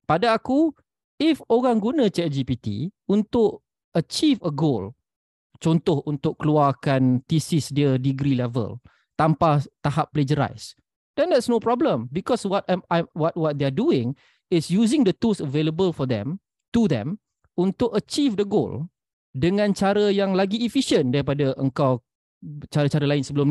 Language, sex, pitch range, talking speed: Malay, male, 140-210 Hz, 145 wpm